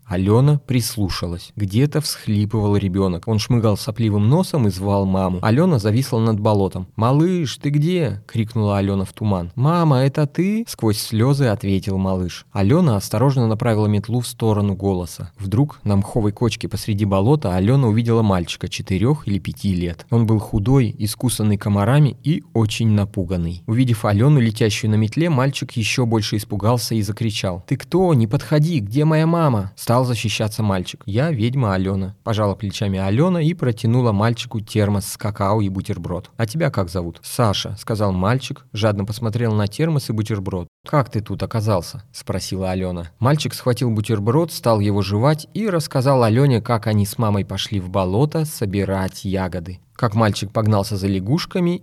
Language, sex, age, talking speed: Russian, male, 20-39, 155 wpm